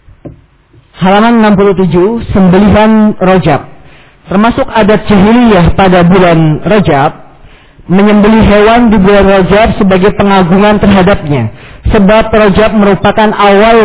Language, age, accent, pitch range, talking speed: Indonesian, 40-59, native, 170-200 Hz, 95 wpm